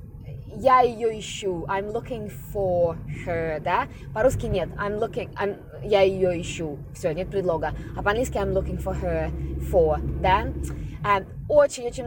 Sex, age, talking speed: female, 20-39, 145 wpm